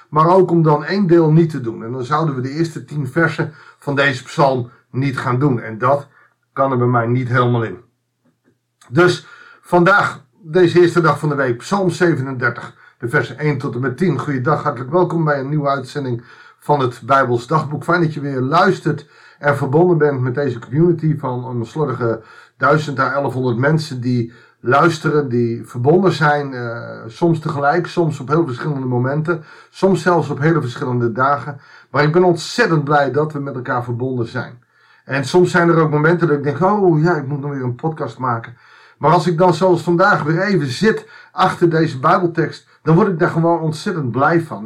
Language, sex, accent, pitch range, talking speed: Dutch, male, Dutch, 130-170 Hz, 195 wpm